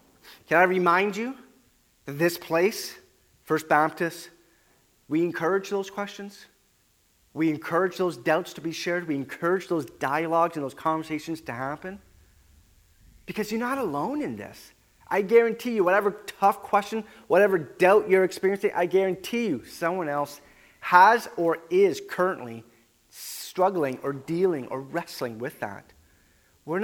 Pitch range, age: 135-195 Hz, 30-49